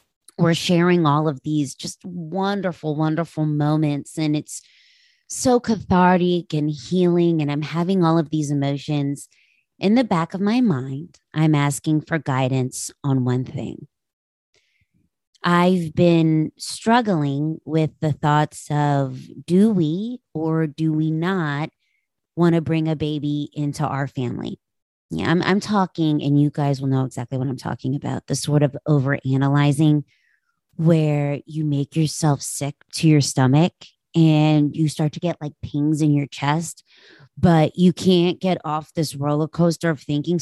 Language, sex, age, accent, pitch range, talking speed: English, female, 30-49, American, 140-175 Hz, 150 wpm